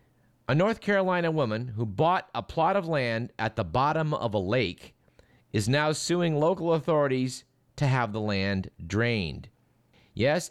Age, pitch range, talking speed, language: 50-69, 115-155 Hz, 155 wpm, English